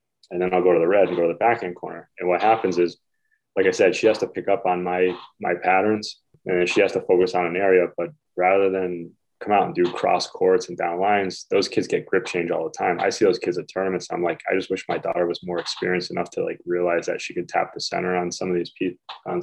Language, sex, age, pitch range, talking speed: English, male, 20-39, 90-110 Hz, 280 wpm